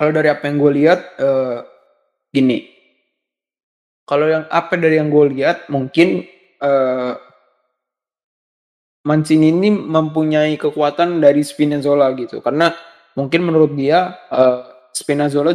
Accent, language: native, Indonesian